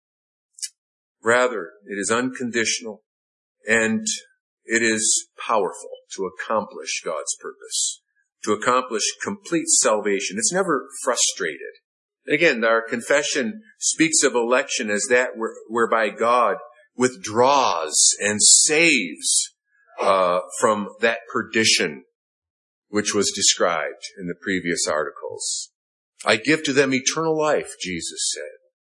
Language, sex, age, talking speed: English, male, 50-69, 105 wpm